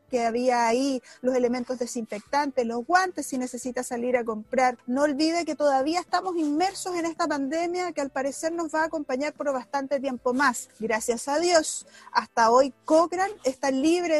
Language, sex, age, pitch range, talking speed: Spanish, female, 30-49, 250-315 Hz, 175 wpm